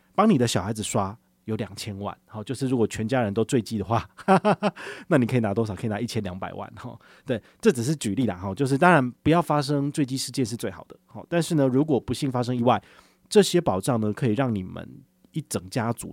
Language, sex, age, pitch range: Chinese, male, 30-49, 105-145 Hz